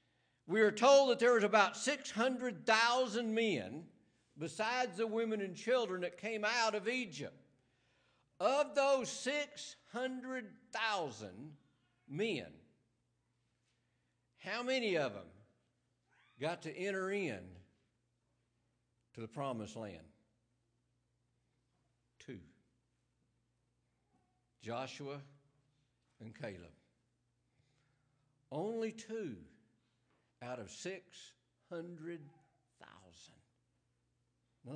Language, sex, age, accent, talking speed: English, male, 60-79, American, 80 wpm